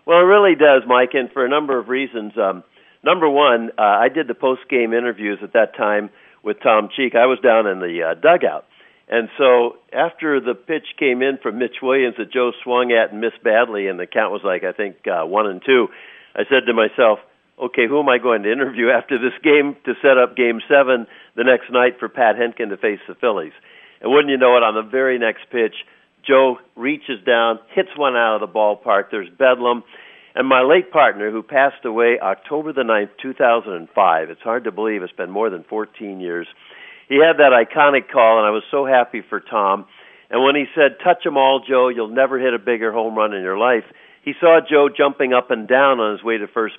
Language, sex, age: English, male, 50-69